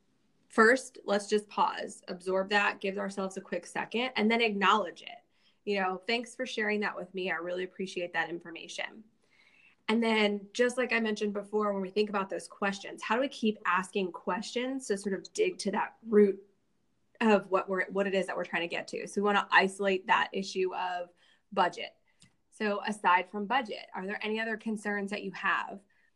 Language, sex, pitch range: English, female, 185-225 Hz